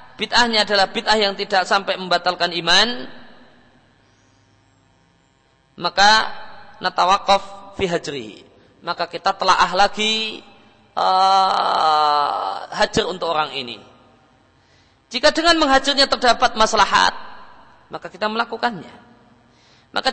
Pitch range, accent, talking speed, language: 170-215 Hz, native, 85 wpm, Indonesian